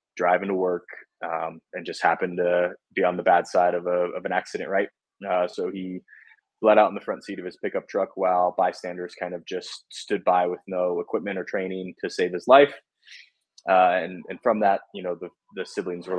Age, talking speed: 20-39, 220 wpm